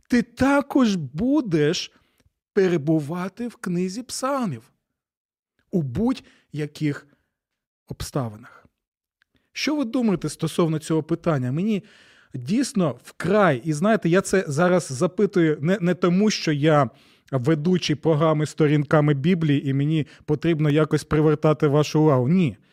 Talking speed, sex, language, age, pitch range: 110 wpm, male, Ukrainian, 30-49, 140-180 Hz